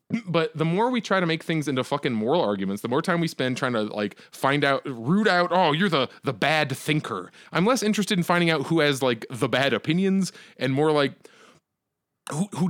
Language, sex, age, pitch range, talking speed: English, male, 20-39, 145-210 Hz, 220 wpm